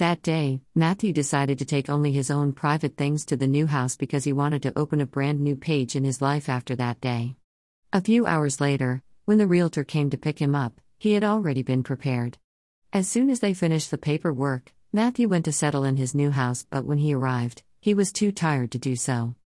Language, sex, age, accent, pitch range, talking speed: English, female, 50-69, American, 135-170 Hz, 225 wpm